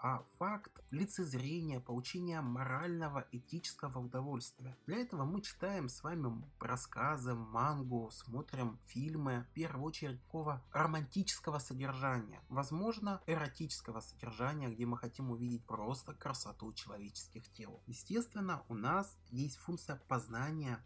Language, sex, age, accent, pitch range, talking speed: Russian, male, 30-49, native, 125-165 Hz, 115 wpm